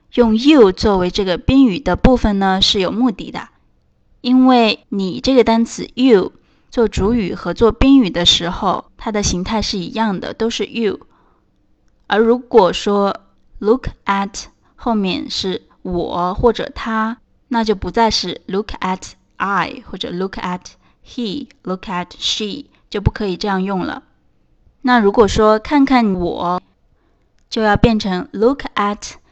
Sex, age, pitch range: female, 20-39, 195-245 Hz